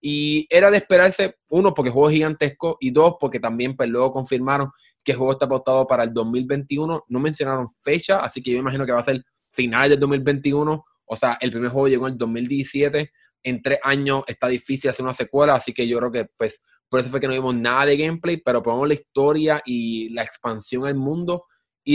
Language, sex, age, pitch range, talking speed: Spanish, male, 20-39, 115-140 Hz, 225 wpm